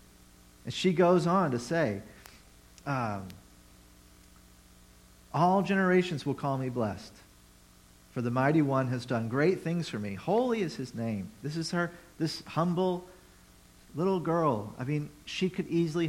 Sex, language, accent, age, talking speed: male, English, American, 50-69, 145 wpm